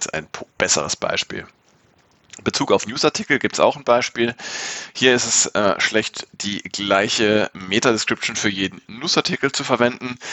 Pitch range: 100-115 Hz